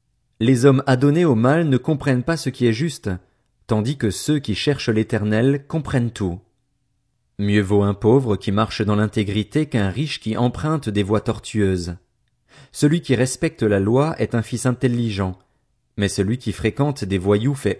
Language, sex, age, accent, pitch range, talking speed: French, male, 40-59, French, 105-135 Hz, 170 wpm